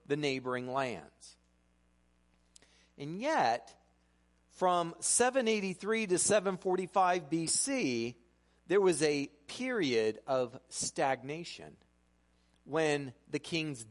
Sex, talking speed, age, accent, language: male, 80 wpm, 40-59, American, English